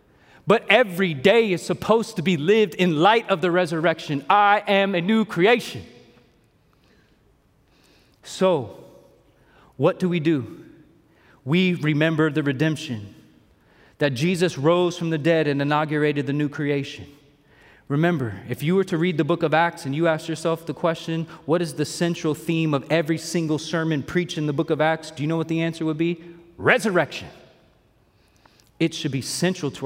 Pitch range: 145-180 Hz